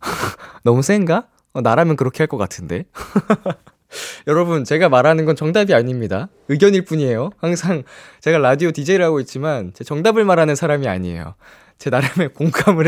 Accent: native